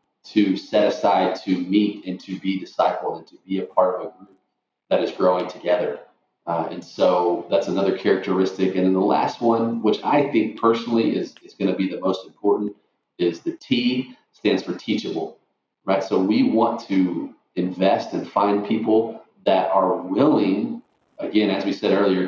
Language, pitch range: English, 95-110 Hz